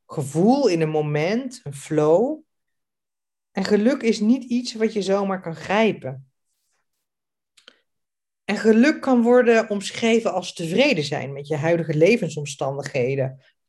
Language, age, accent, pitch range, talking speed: Dutch, 40-59, Dutch, 160-235 Hz, 125 wpm